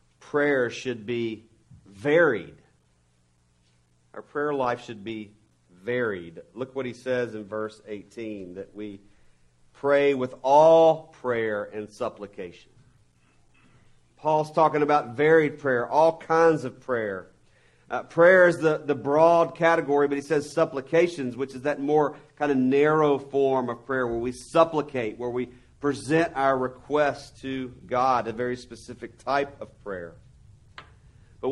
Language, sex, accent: English, male, American